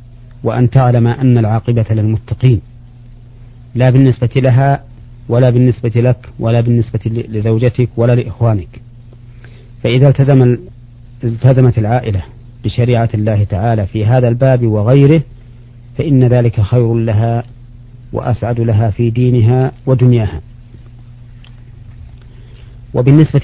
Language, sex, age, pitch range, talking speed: Arabic, male, 40-59, 115-125 Hz, 90 wpm